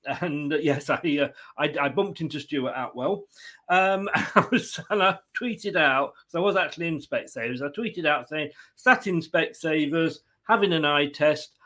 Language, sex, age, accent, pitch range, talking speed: English, male, 40-59, British, 140-200 Hz, 185 wpm